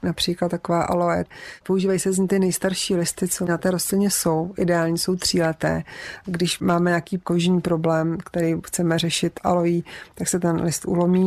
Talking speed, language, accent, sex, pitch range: 170 wpm, Czech, native, female, 165-180 Hz